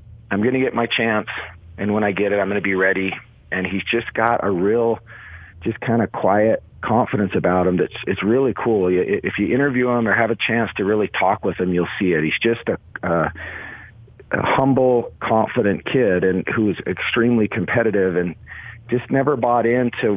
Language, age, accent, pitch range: English, 40-59, American, 95-115 Hz